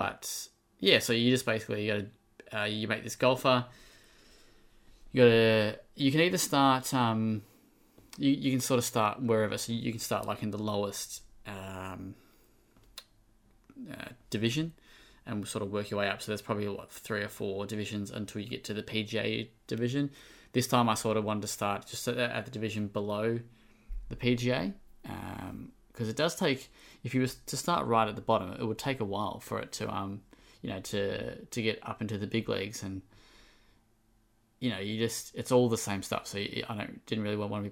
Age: 20-39